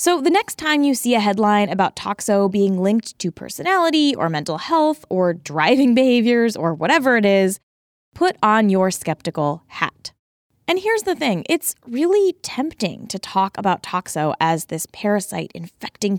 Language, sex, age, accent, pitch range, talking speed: English, female, 20-39, American, 200-275 Hz, 165 wpm